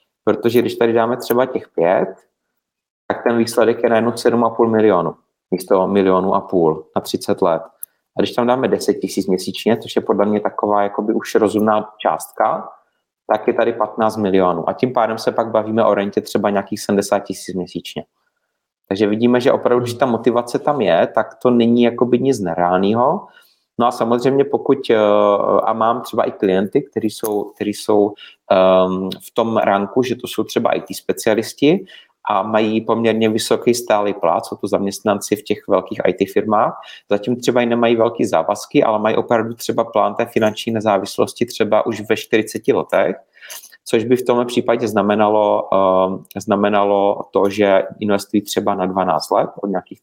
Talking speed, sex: 165 wpm, male